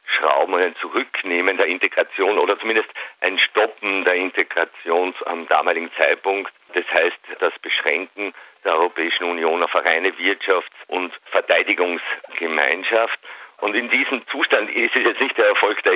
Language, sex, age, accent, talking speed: German, male, 50-69, Swiss, 145 wpm